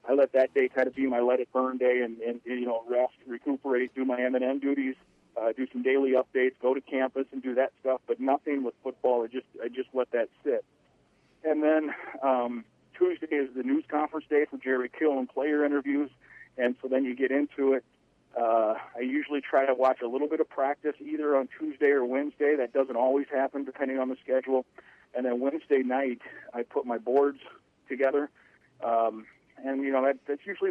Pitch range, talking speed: 125-145 Hz, 210 wpm